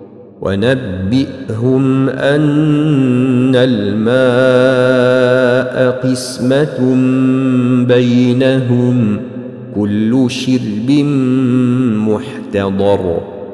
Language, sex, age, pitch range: Arabic, male, 50-69, 125-150 Hz